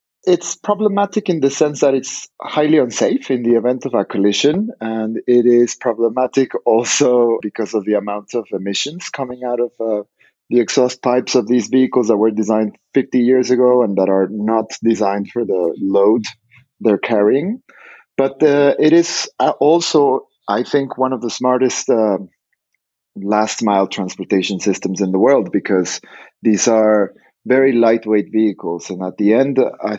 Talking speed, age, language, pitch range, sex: 165 wpm, 30-49, English, 100-125 Hz, male